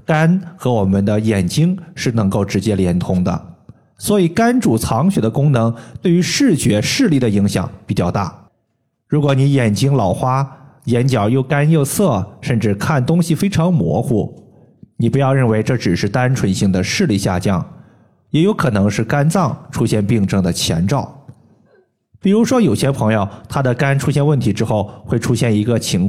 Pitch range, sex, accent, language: 105-150 Hz, male, native, Chinese